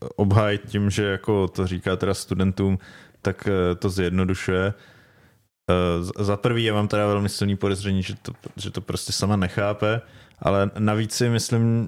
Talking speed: 150 wpm